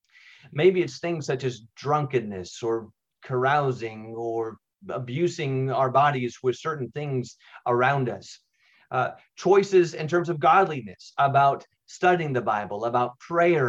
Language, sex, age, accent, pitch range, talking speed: English, male, 30-49, American, 120-150 Hz, 125 wpm